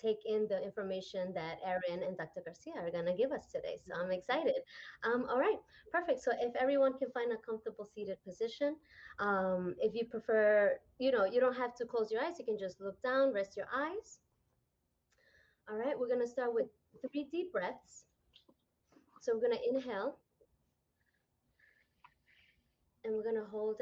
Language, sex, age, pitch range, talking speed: English, female, 20-39, 195-265 Hz, 180 wpm